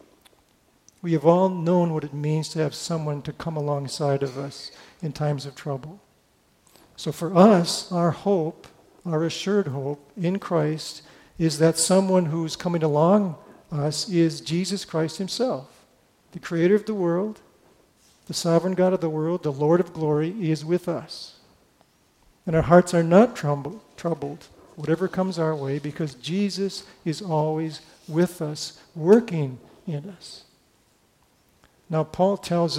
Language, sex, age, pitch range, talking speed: English, male, 50-69, 150-180 Hz, 150 wpm